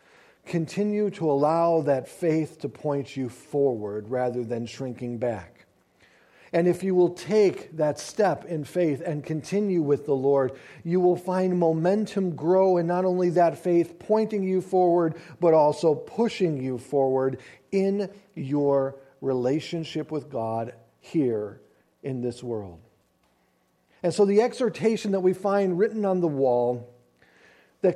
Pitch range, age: 145-205 Hz, 50-69